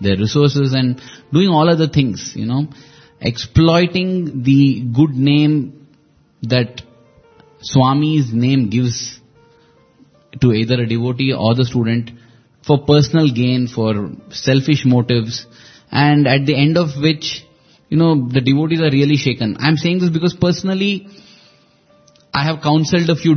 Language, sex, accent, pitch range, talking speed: English, male, Indian, 120-155 Hz, 140 wpm